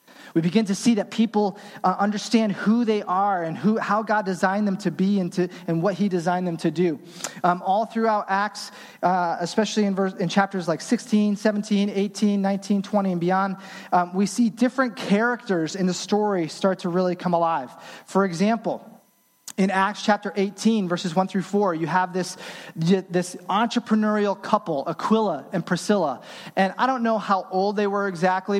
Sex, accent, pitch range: male, American, 180-210 Hz